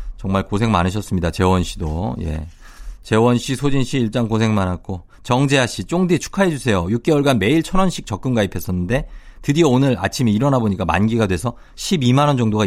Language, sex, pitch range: Korean, male, 90-135 Hz